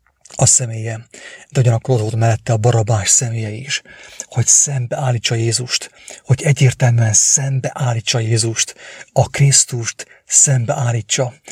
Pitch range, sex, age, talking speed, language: 115-130 Hz, male, 30-49, 110 wpm, English